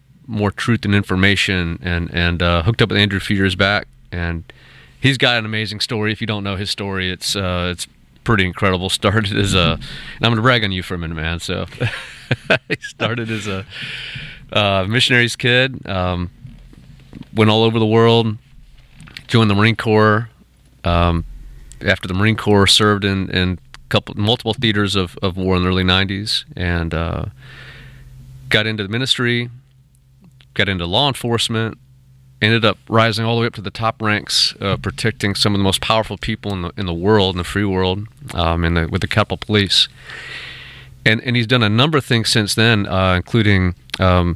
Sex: male